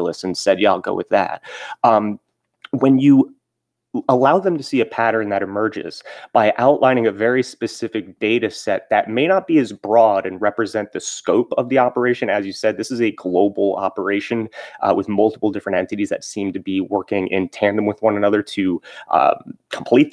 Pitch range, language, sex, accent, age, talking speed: 100-130 Hz, English, male, American, 30-49, 190 wpm